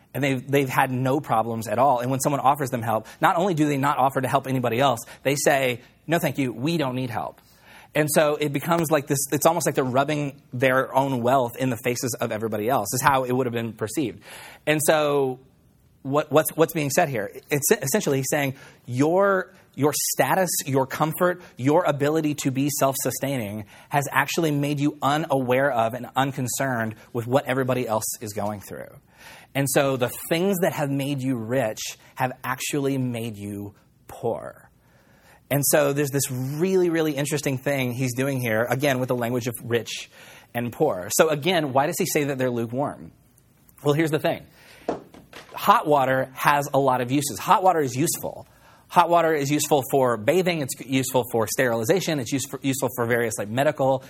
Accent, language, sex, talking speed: American, English, male, 185 wpm